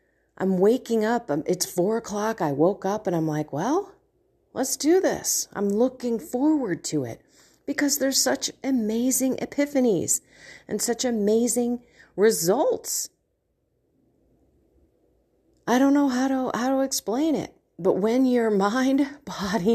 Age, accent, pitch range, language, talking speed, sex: 40-59, American, 155-245 Hz, English, 135 wpm, female